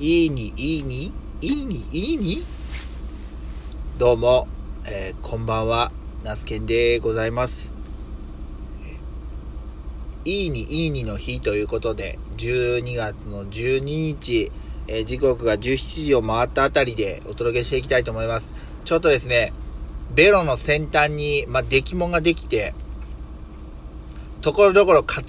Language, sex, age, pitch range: Japanese, male, 40-59, 100-140 Hz